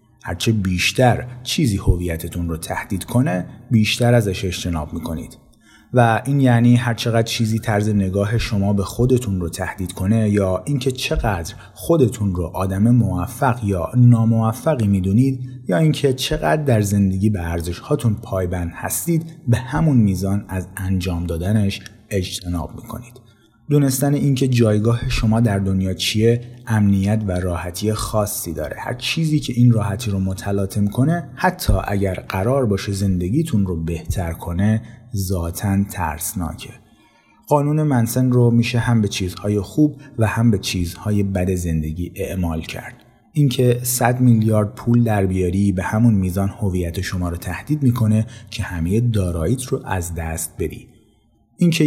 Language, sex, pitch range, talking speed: Persian, male, 95-125 Hz, 140 wpm